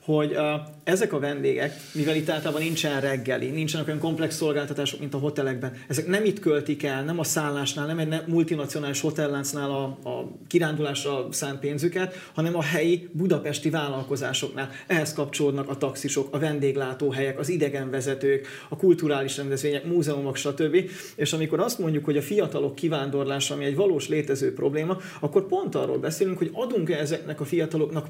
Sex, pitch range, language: male, 140-165 Hz, Hungarian